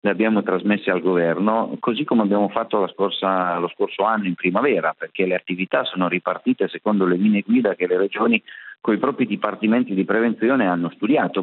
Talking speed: 180 wpm